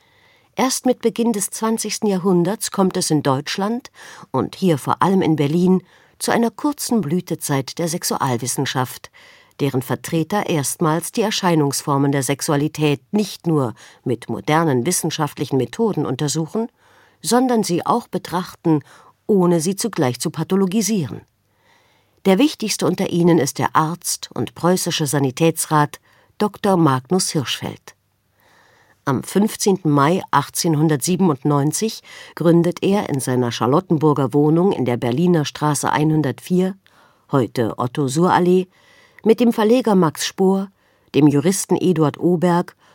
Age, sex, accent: 50-69, female, German